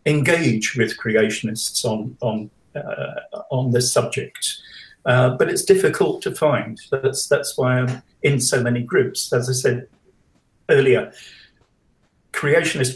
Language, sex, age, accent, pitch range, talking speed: English, male, 50-69, British, 120-145 Hz, 130 wpm